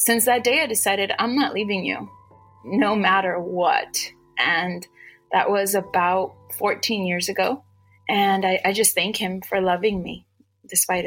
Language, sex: English, female